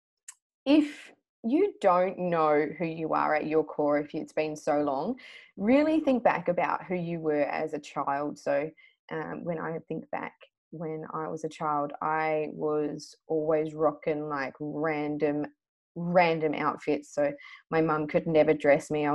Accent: Australian